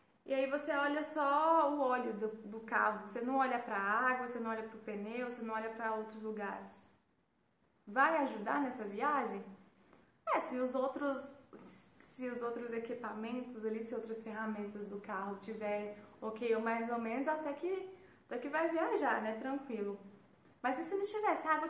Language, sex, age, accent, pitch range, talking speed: Portuguese, female, 20-39, Brazilian, 230-315 Hz, 190 wpm